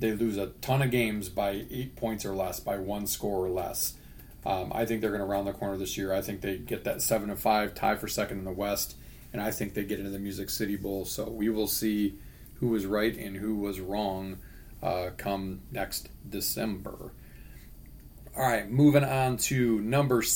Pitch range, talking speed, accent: 100-125 Hz, 205 wpm, American